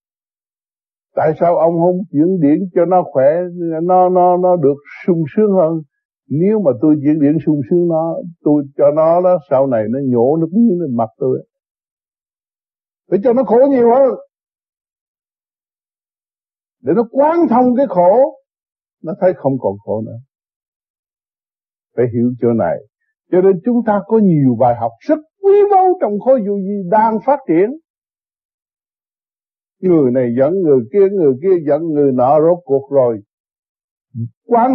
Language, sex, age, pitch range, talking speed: Vietnamese, male, 60-79, 135-220 Hz, 155 wpm